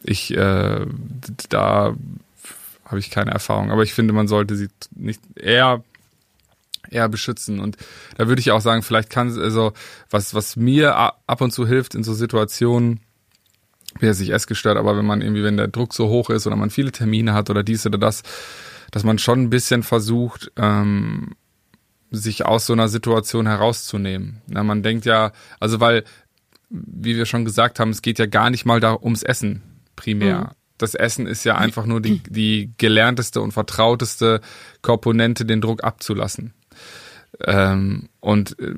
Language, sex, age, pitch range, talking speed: German, male, 20-39, 105-115 Hz, 170 wpm